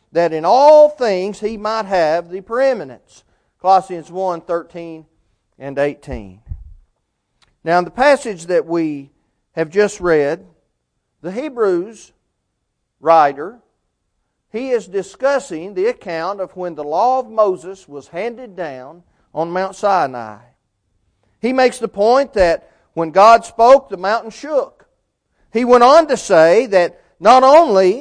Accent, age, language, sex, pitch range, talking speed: American, 40-59, English, male, 145-235 Hz, 135 wpm